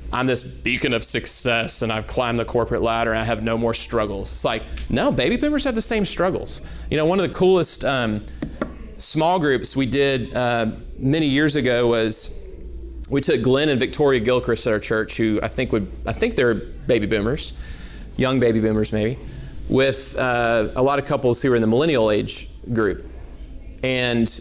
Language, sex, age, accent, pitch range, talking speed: English, male, 30-49, American, 100-130 Hz, 185 wpm